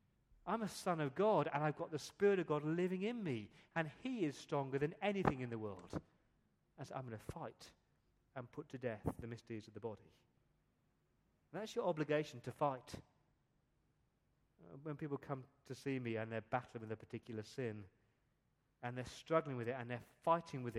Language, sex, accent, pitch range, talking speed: English, male, British, 115-145 Hz, 190 wpm